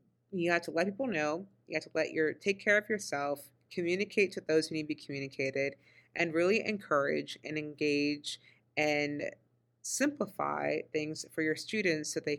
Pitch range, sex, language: 150-185 Hz, female, English